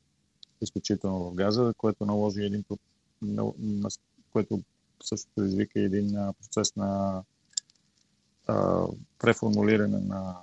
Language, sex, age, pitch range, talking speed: Bulgarian, male, 40-59, 95-105 Hz, 80 wpm